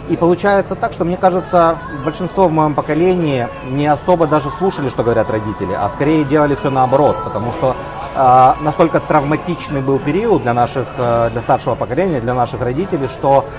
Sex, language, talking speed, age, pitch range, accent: male, Russian, 170 wpm, 30-49, 125-155 Hz, native